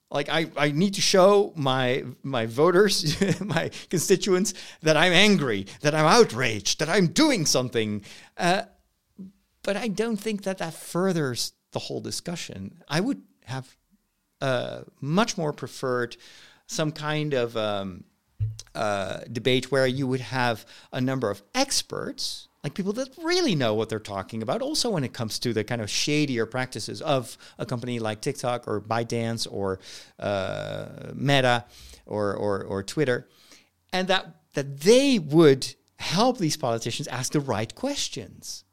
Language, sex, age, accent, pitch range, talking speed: English, male, 50-69, American, 120-190 Hz, 150 wpm